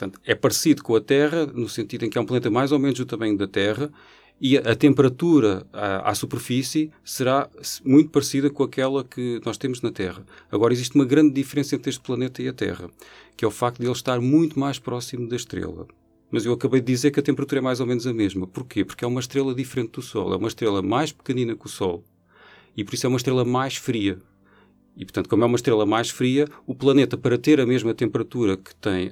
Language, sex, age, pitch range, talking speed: Portuguese, male, 40-59, 115-140 Hz, 235 wpm